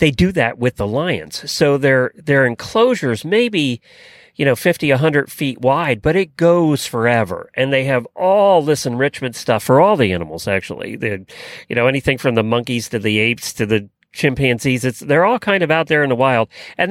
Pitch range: 110-150 Hz